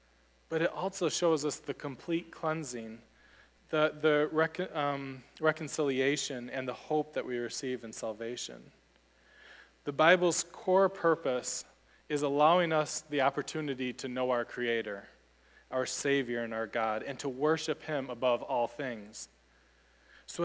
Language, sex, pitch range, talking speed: English, male, 125-160 Hz, 140 wpm